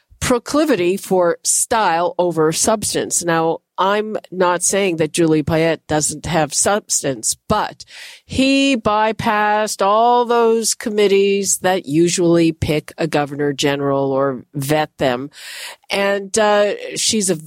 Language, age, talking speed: English, 50-69, 115 wpm